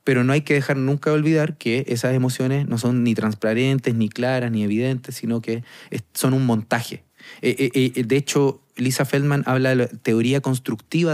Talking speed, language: 180 wpm, Spanish